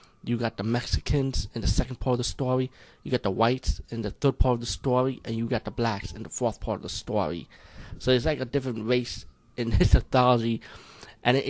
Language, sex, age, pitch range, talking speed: English, male, 20-39, 110-125 Hz, 230 wpm